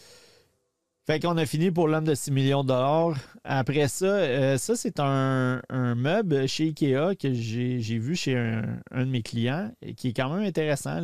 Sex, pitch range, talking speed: male, 120-155 Hz, 200 wpm